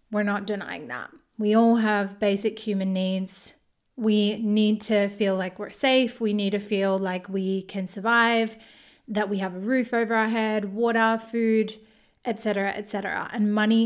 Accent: Australian